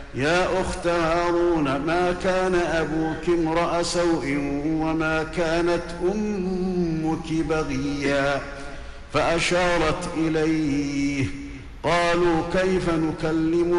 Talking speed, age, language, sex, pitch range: 75 wpm, 50-69, Arabic, male, 145-175 Hz